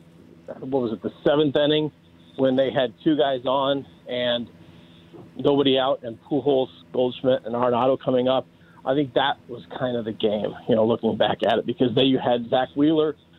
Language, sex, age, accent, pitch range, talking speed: English, male, 40-59, American, 115-140 Hz, 190 wpm